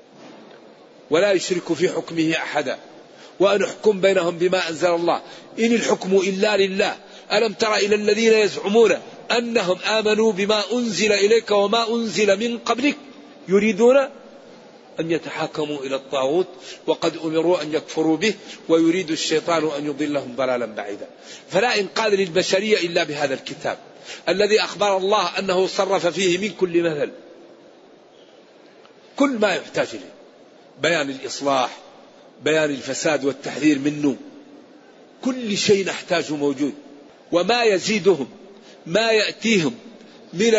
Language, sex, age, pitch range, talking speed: Arabic, male, 50-69, 170-220 Hz, 115 wpm